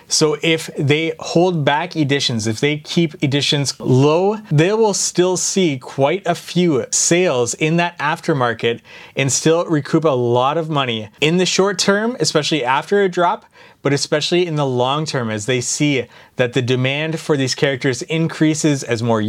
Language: English